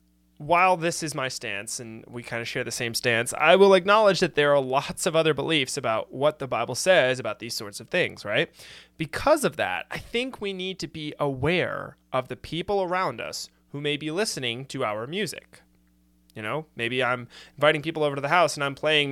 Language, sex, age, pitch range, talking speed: English, male, 20-39, 120-170 Hz, 215 wpm